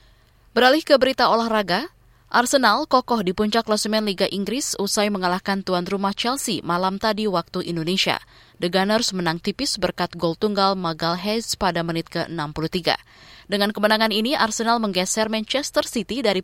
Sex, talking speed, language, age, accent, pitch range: female, 140 wpm, Indonesian, 20-39, native, 180-225 Hz